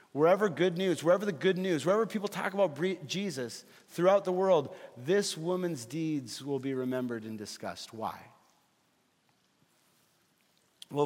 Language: English